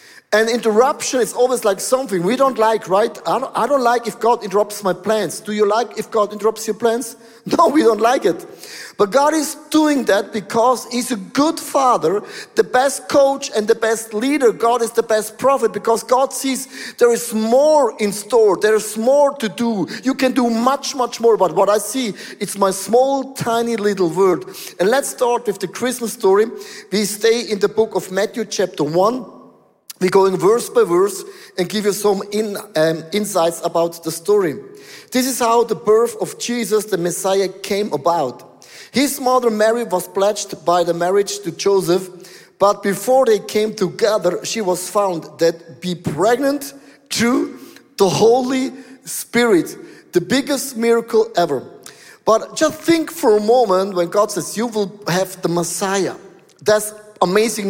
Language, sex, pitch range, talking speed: English, male, 200-255 Hz, 180 wpm